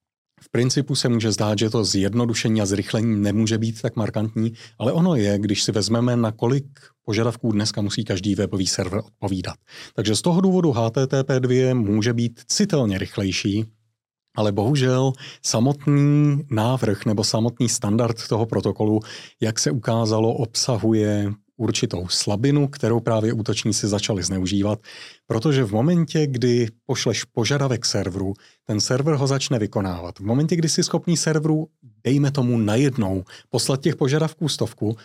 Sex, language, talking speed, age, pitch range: male, Czech, 145 wpm, 30-49, 110-140 Hz